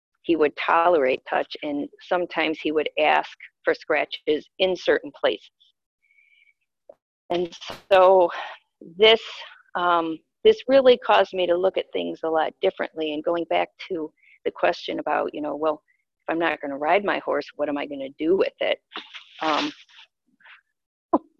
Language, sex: English, female